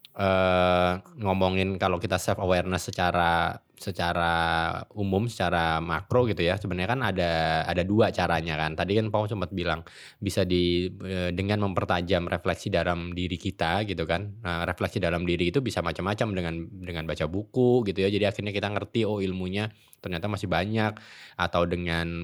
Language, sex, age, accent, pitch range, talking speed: Indonesian, male, 20-39, native, 85-105 Hz, 160 wpm